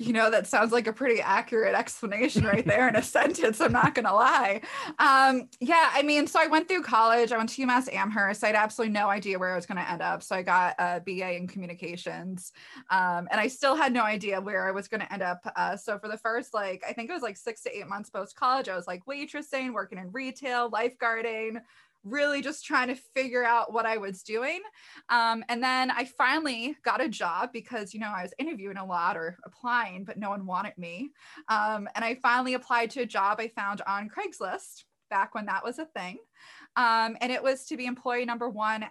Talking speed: 230 wpm